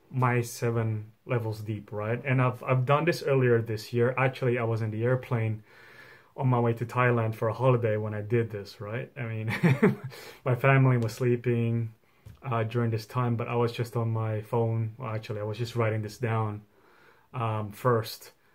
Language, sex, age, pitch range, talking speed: English, male, 20-39, 110-130 Hz, 190 wpm